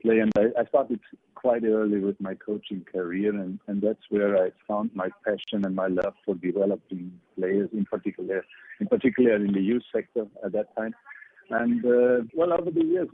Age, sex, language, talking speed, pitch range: 50-69, male, English, 190 wpm, 110-130 Hz